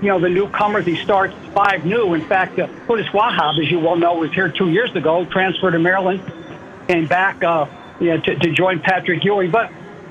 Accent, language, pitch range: American, English, 170-200 Hz